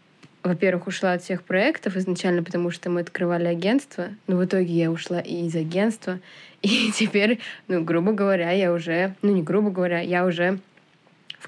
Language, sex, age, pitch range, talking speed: Russian, female, 20-39, 175-190 Hz, 170 wpm